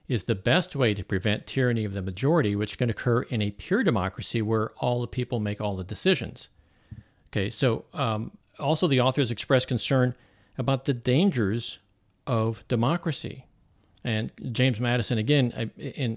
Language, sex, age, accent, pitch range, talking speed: English, male, 50-69, American, 110-135 Hz, 160 wpm